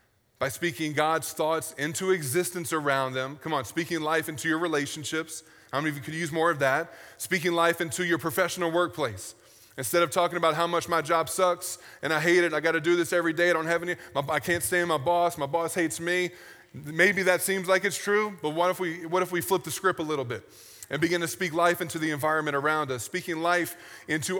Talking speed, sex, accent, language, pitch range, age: 240 wpm, male, American, English, 150-175 Hz, 20-39